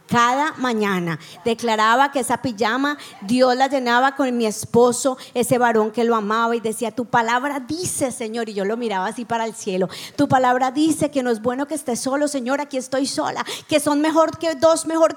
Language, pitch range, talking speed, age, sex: English, 230-315 Hz, 200 wpm, 30-49, female